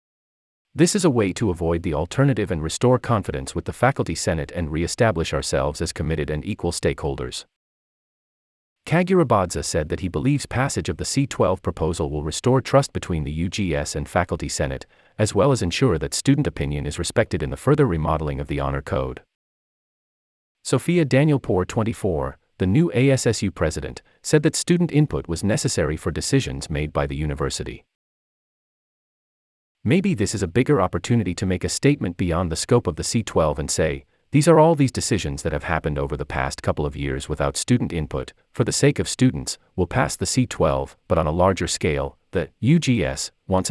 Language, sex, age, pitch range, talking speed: English, male, 40-59, 75-125 Hz, 180 wpm